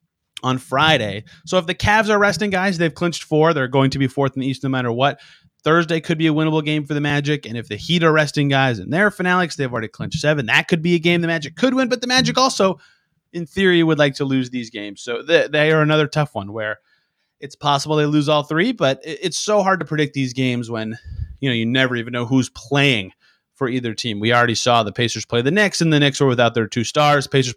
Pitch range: 120-160 Hz